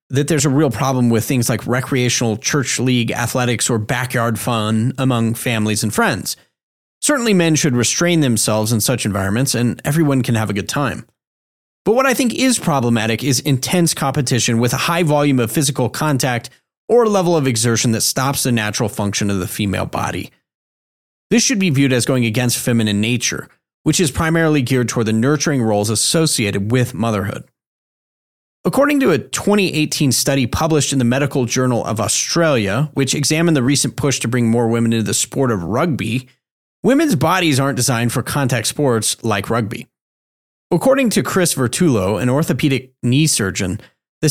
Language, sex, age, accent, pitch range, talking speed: English, male, 30-49, American, 115-155 Hz, 170 wpm